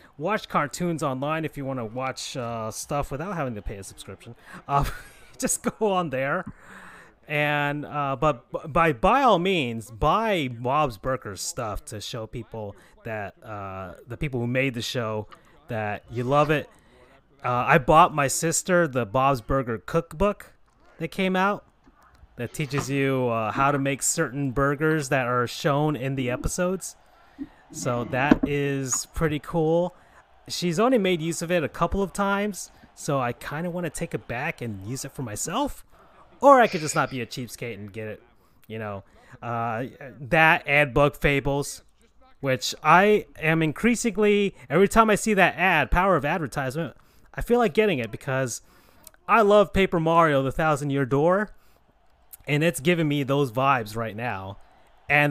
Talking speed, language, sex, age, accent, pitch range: 170 wpm, English, male, 30-49, American, 125-170 Hz